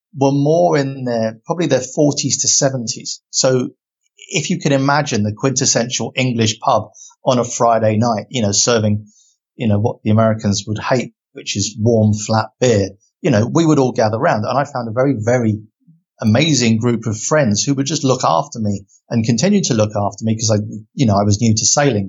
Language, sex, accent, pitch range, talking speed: English, male, British, 110-155 Hz, 205 wpm